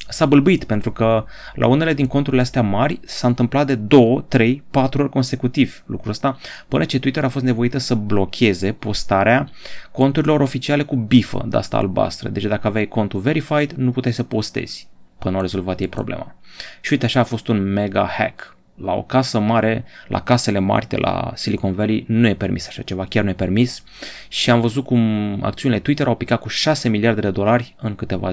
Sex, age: male, 30-49